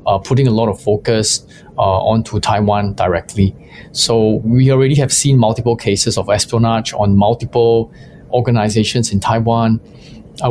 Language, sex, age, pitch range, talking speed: English, male, 20-39, 110-130 Hz, 145 wpm